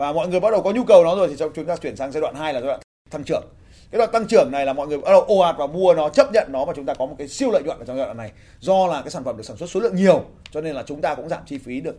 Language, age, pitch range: Vietnamese, 20-39, 125-190 Hz